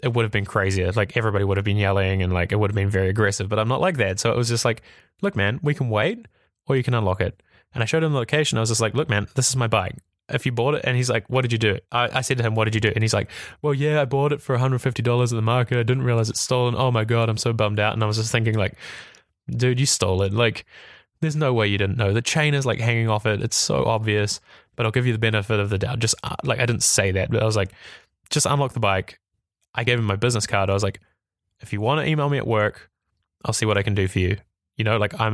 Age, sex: 10-29, male